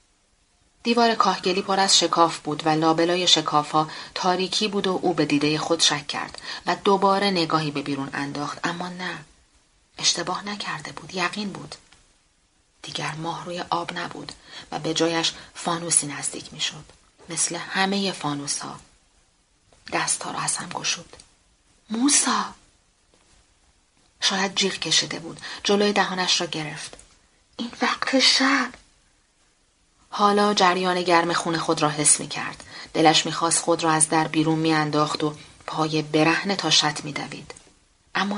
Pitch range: 155-195 Hz